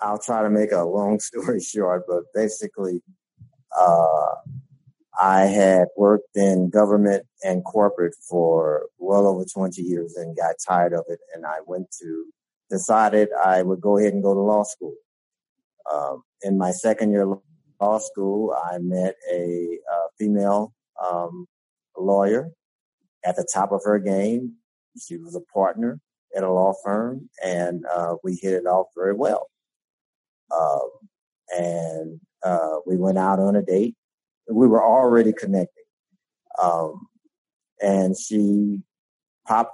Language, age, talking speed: English, 50-69, 145 wpm